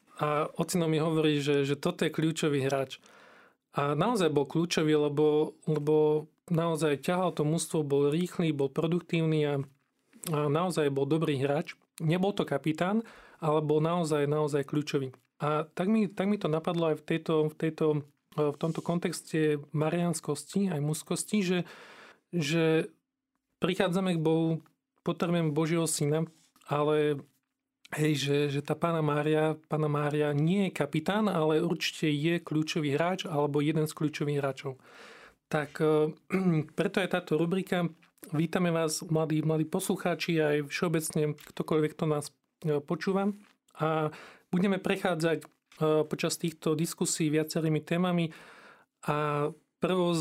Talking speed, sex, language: 135 wpm, male, Slovak